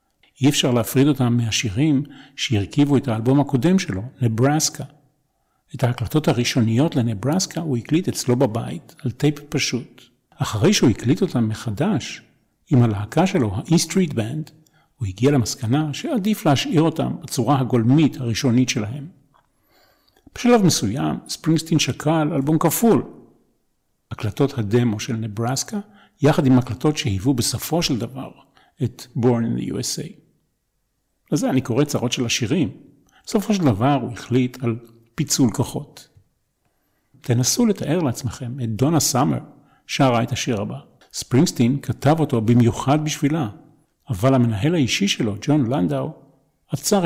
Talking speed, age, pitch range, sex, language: 130 wpm, 50-69, 120-155 Hz, male, Hebrew